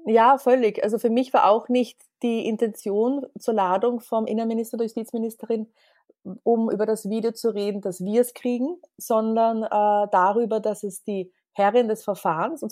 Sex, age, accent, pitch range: female, 20-39, German, 190-225 Hz